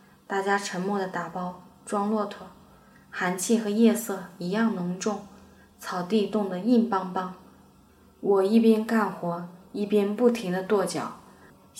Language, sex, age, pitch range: Chinese, female, 20-39, 185-210 Hz